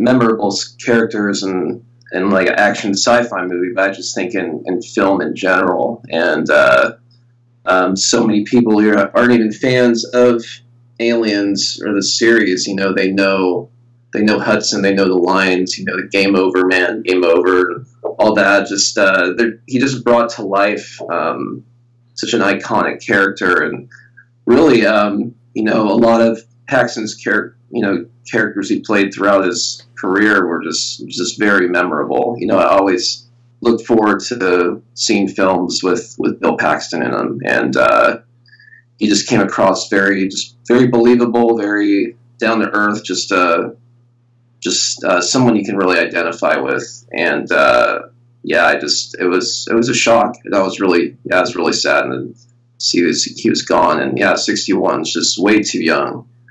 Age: 20-39